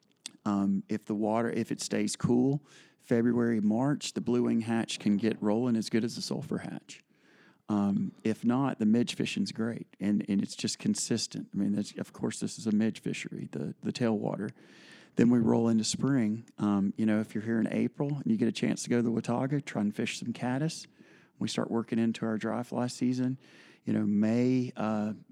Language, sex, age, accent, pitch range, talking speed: English, male, 40-59, American, 105-120 Hz, 205 wpm